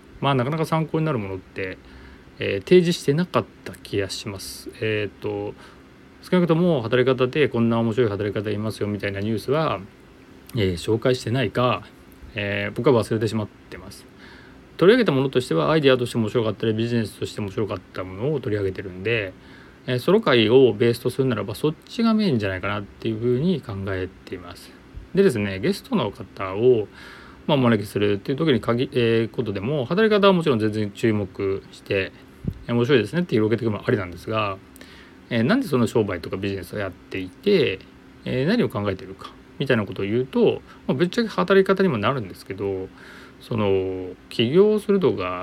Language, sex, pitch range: Japanese, male, 95-135 Hz